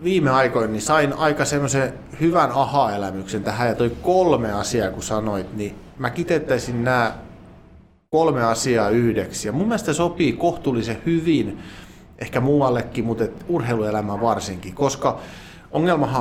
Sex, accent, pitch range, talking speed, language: male, native, 105-140 Hz, 130 wpm, Finnish